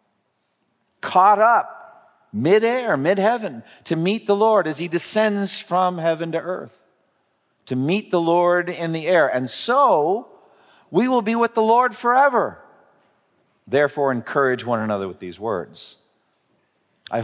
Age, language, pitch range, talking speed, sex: 50-69, English, 135-190 Hz, 135 wpm, male